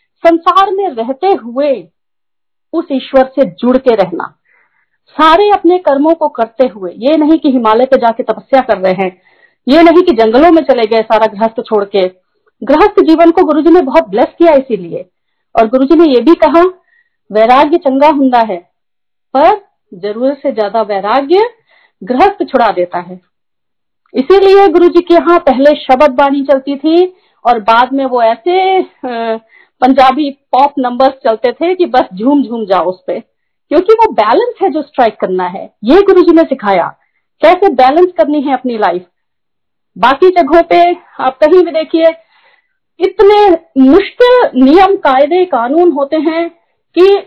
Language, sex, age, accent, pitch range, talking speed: Hindi, female, 40-59, native, 250-355 Hz, 145 wpm